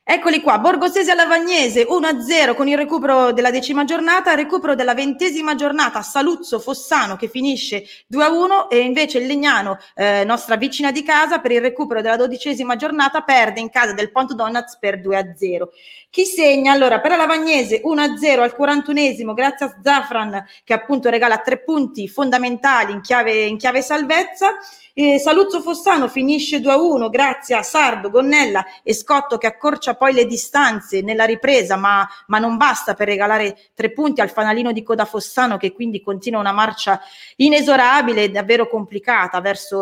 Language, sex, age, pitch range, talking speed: Italian, female, 20-39, 210-290 Hz, 160 wpm